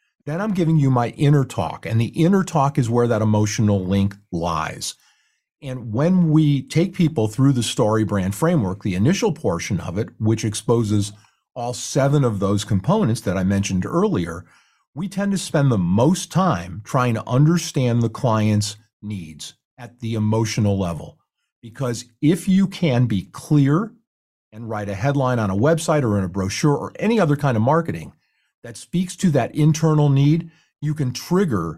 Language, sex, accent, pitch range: English, male, American, 110-150 Hz